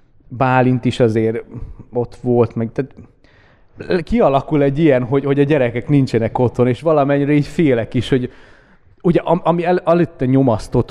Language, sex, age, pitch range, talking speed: Hungarian, male, 30-49, 115-140 Hz, 155 wpm